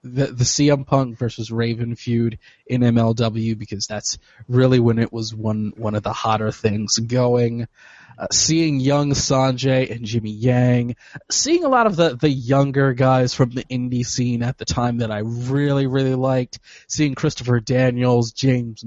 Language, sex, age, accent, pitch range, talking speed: English, male, 20-39, American, 115-145 Hz, 170 wpm